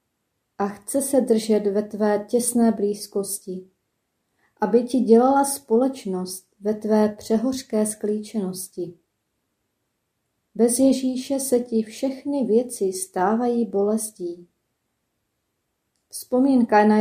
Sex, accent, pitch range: female, native, 205-240 Hz